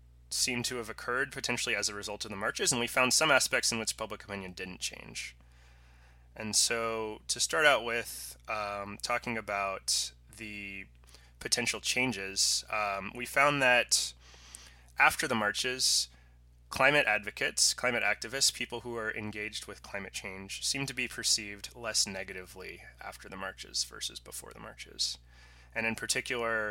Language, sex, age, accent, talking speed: English, male, 20-39, American, 155 wpm